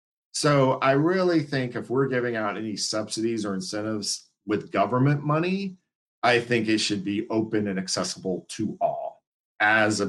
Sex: male